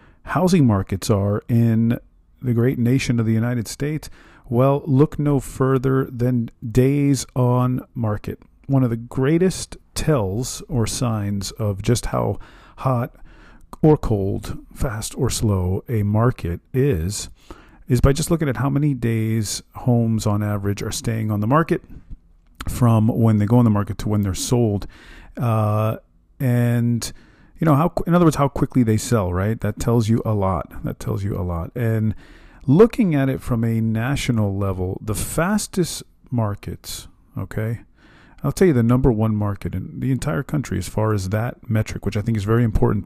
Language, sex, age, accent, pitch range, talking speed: English, male, 40-59, American, 105-135 Hz, 170 wpm